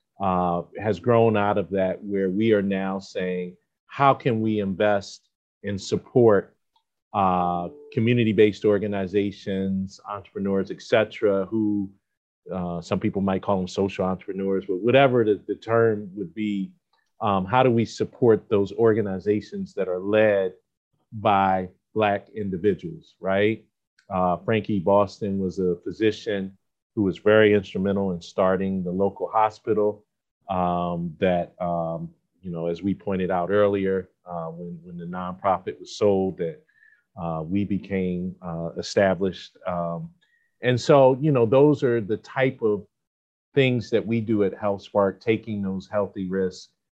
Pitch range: 95-110 Hz